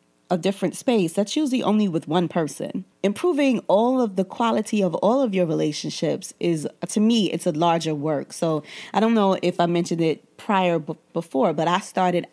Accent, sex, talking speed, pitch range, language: American, female, 190 wpm, 160-190 Hz, English